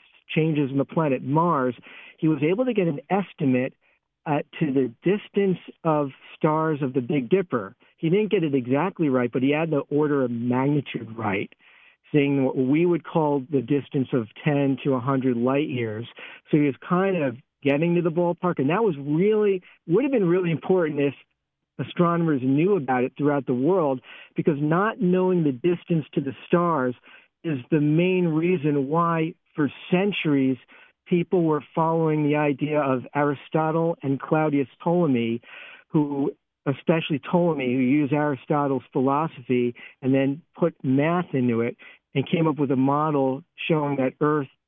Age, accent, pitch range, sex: 50-69, American, 135-165 Hz, male